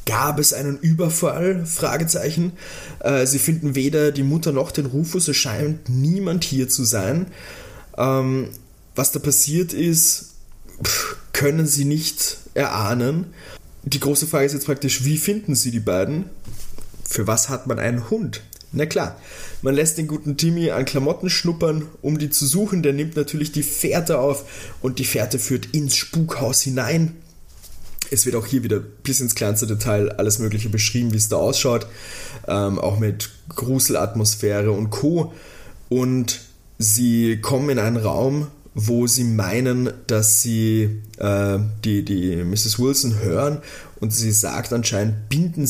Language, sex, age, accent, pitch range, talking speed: German, male, 20-39, German, 110-150 Hz, 150 wpm